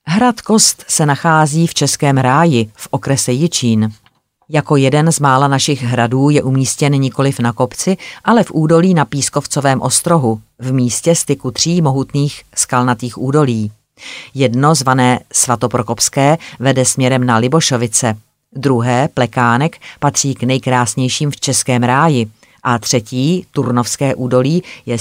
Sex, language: female, Czech